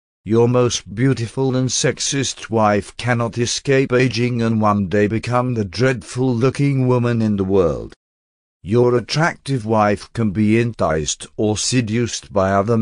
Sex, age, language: male, 50-69, English